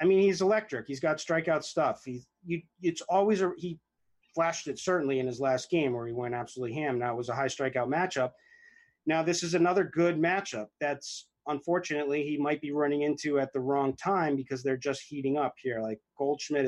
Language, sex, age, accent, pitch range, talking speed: English, male, 30-49, American, 130-160 Hz, 210 wpm